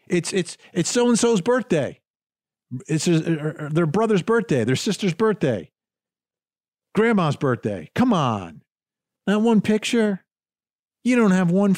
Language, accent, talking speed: English, American, 110 wpm